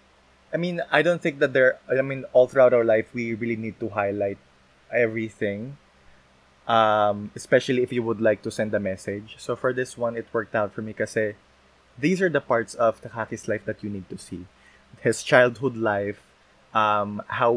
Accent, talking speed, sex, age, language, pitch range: native, 190 wpm, male, 20-39, Filipino, 100-130 Hz